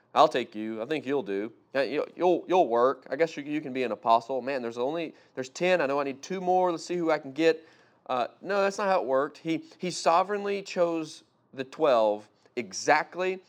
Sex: male